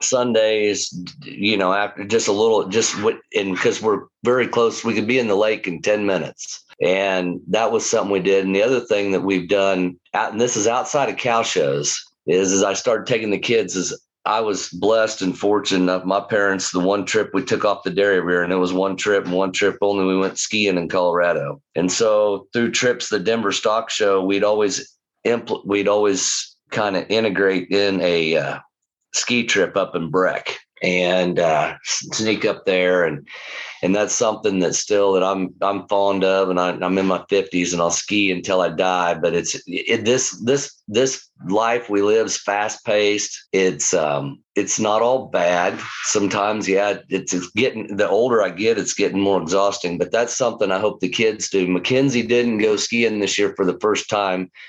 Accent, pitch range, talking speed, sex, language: American, 95-110 Hz, 200 wpm, male, English